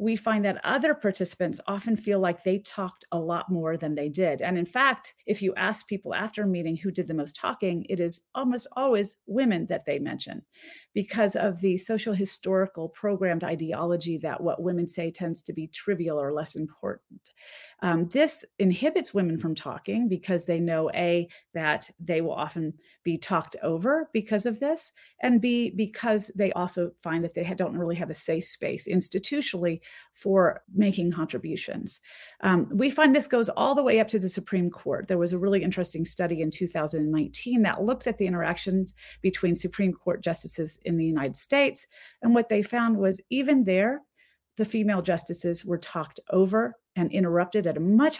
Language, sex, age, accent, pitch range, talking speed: English, female, 40-59, American, 170-215 Hz, 185 wpm